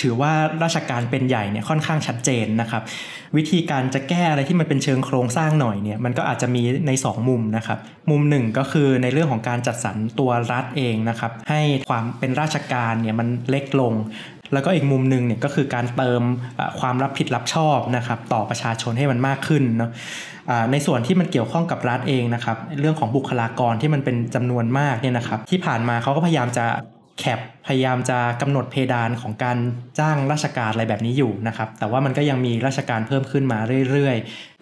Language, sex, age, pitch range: Thai, male, 20-39, 120-145 Hz